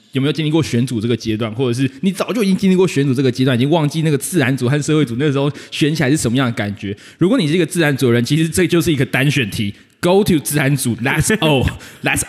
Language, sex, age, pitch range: Chinese, male, 20-39, 125-170 Hz